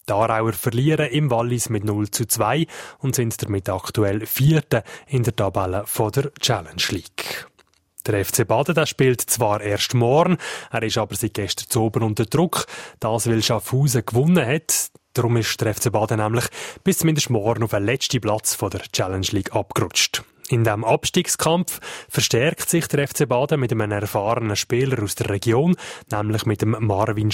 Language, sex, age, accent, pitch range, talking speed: German, male, 20-39, Swiss, 105-140 Hz, 170 wpm